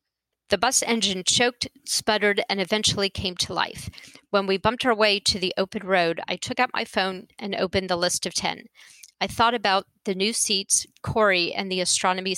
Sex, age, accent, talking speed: female, 40-59, American, 195 wpm